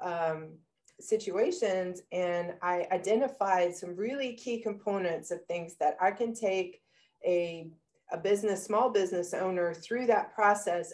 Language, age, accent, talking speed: English, 30-49, American, 130 wpm